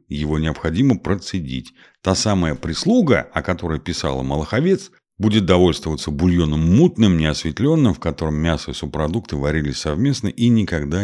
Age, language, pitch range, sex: 50-69, Russian, 75-95 Hz, male